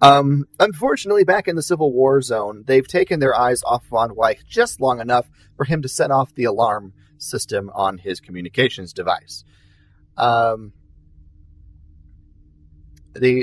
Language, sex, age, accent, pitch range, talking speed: English, male, 30-49, American, 90-140 Hz, 145 wpm